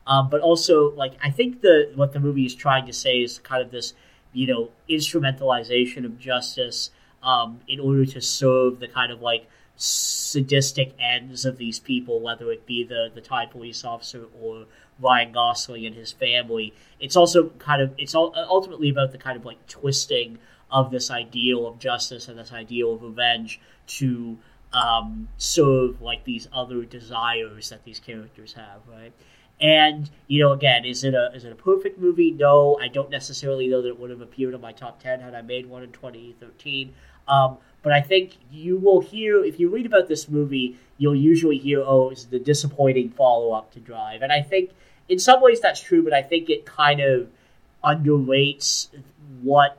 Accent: American